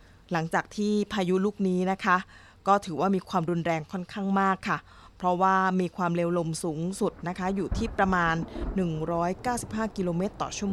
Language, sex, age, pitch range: Thai, female, 20-39, 170-215 Hz